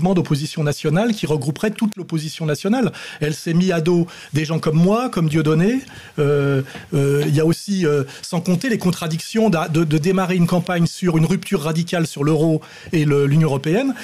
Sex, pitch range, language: male, 155-195 Hz, French